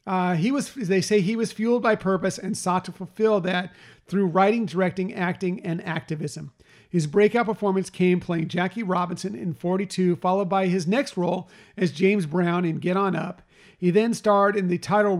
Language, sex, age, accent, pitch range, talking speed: English, male, 40-59, American, 170-200 Hz, 190 wpm